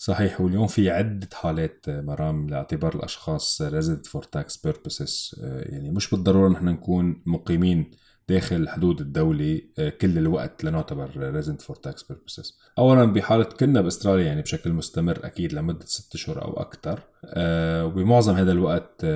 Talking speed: 140 wpm